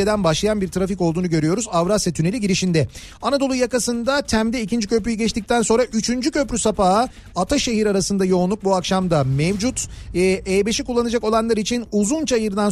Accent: native